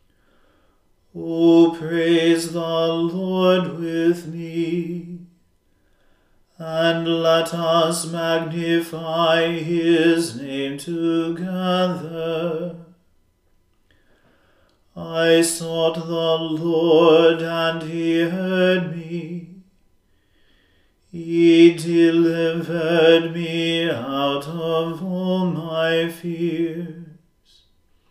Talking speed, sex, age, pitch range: 60 wpm, male, 40-59, 165-170 Hz